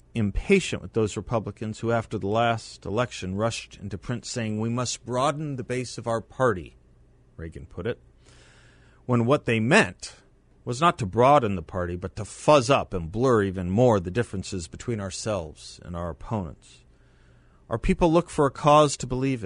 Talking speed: 175 wpm